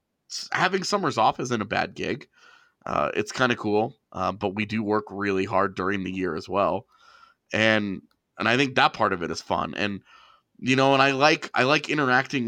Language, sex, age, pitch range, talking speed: English, male, 30-49, 105-140 Hz, 200 wpm